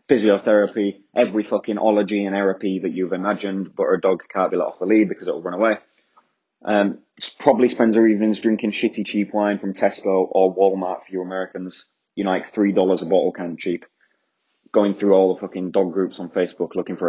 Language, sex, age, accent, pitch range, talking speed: English, male, 20-39, British, 90-110 Hz, 205 wpm